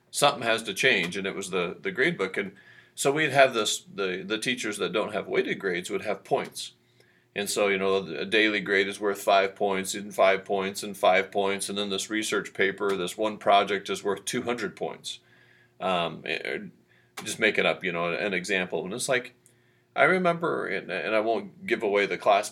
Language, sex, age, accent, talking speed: English, male, 40-59, American, 205 wpm